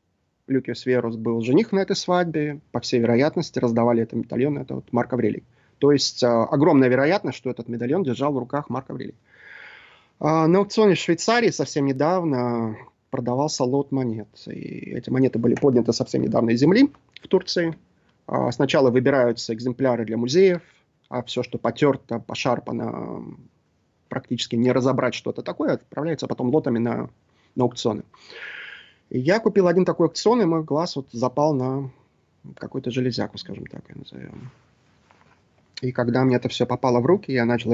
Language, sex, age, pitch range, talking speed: English, male, 30-49, 120-145 Hz, 155 wpm